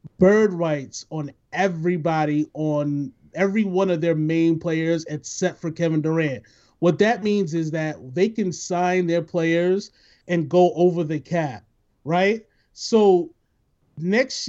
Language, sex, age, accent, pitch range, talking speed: English, male, 30-49, American, 160-200 Hz, 135 wpm